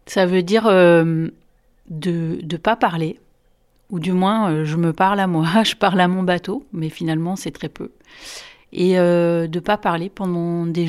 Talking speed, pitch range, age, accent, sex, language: 185 wpm, 155-200 Hz, 40-59, French, female, French